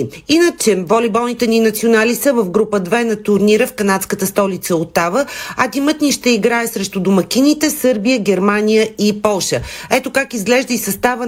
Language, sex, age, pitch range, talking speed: Bulgarian, female, 40-59, 205-245 Hz, 160 wpm